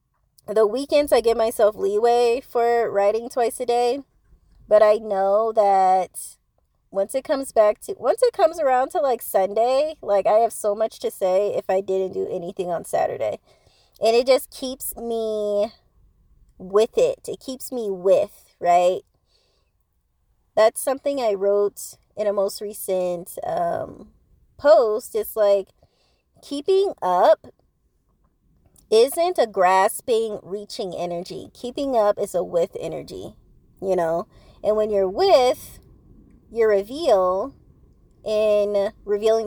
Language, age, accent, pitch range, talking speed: English, 20-39, American, 195-260 Hz, 135 wpm